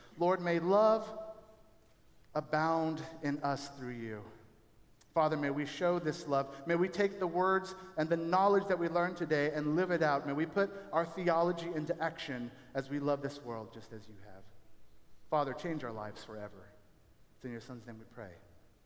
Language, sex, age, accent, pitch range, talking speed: English, male, 50-69, American, 140-210 Hz, 185 wpm